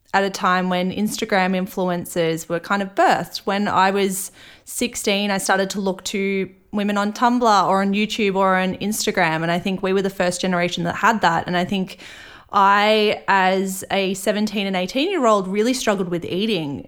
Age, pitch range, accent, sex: 20-39, 185-220 Hz, Australian, female